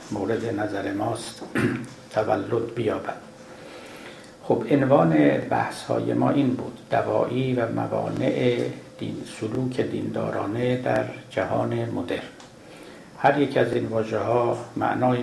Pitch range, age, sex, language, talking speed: 110-125 Hz, 60-79, male, Persian, 105 wpm